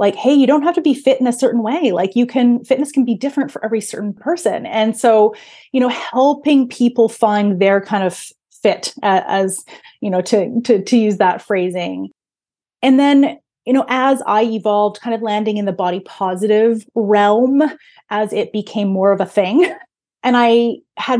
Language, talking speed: English, 195 wpm